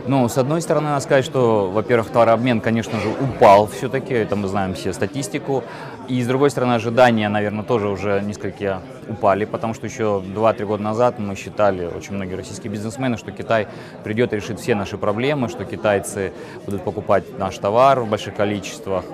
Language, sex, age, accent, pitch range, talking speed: Russian, male, 20-39, native, 105-125 Hz, 180 wpm